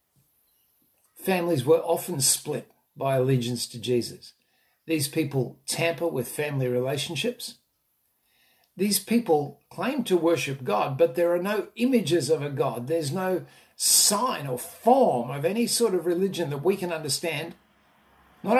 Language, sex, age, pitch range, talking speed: English, male, 50-69, 135-185 Hz, 140 wpm